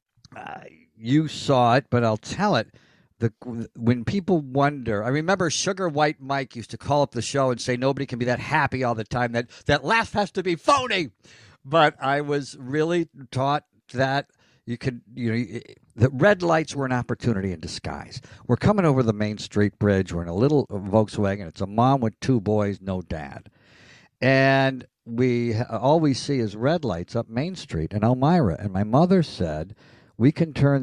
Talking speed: 190 wpm